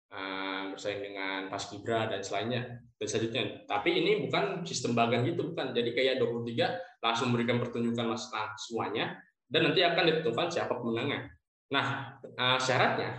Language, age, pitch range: Indonesian, 20-39, 110-130 Hz